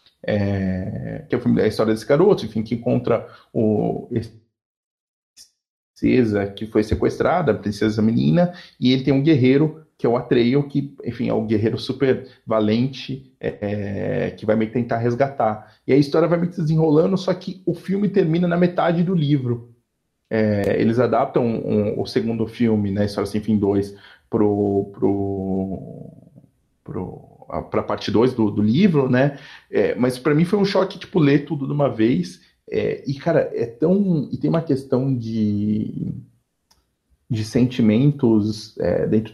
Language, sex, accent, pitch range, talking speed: Portuguese, male, Brazilian, 105-140 Hz, 165 wpm